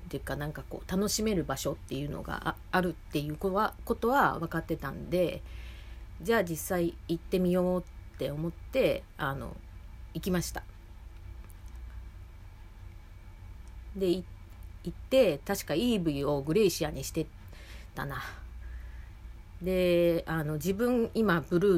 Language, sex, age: Japanese, female, 40-59